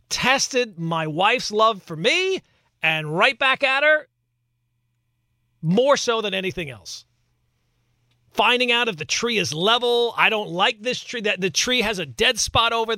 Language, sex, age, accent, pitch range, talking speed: English, male, 40-59, American, 160-245 Hz, 165 wpm